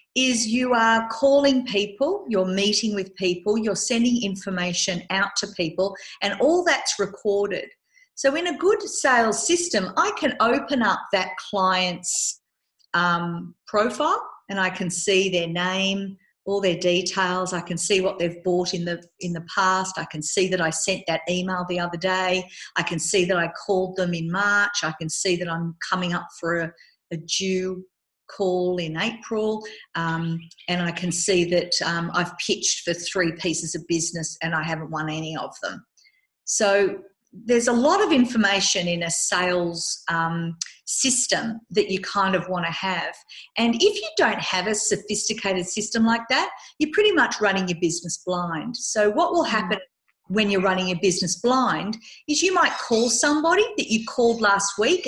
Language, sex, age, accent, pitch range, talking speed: English, female, 50-69, Australian, 175-225 Hz, 180 wpm